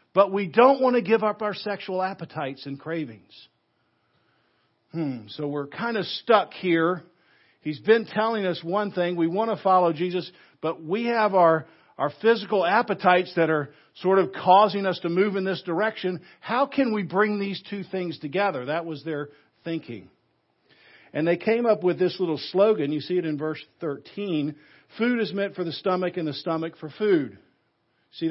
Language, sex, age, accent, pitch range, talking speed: English, male, 50-69, American, 165-210 Hz, 180 wpm